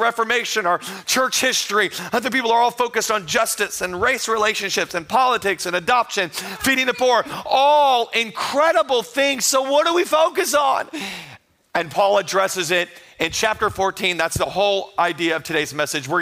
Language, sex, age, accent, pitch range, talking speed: English, male, 40-59, American, 175-230 Hz, 165 wpm